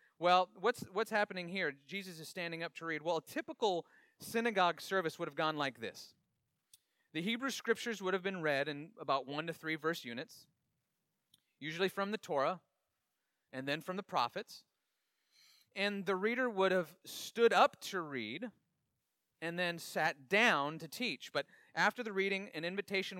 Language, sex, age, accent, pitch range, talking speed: English, male, 30-49, American, 150-195 Hz, 170 wpm